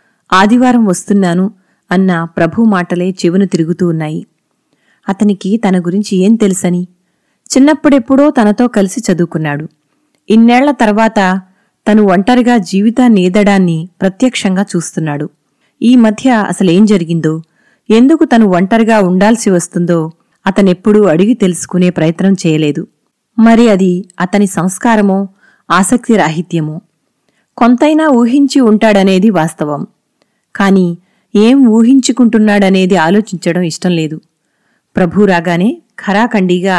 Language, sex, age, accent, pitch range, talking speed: Telugu, female, 20-39, native, 175-225 Hz, 90 wpm